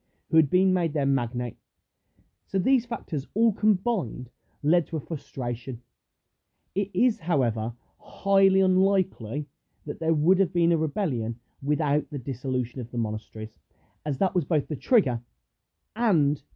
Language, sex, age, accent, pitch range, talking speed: English, male, 30-49, British, 115-165 Hz, 145 wpm